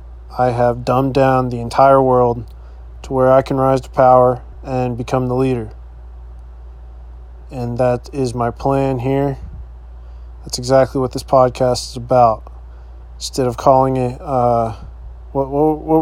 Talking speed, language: 145 wpm, English